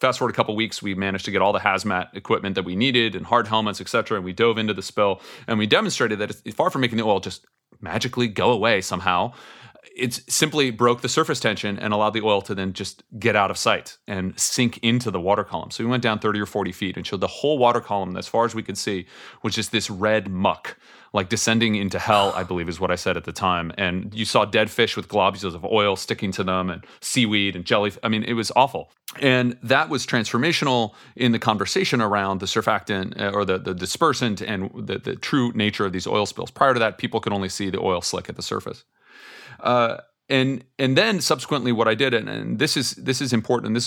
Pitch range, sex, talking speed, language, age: 100-120 Hz, male, 240 wpm, English, 30-49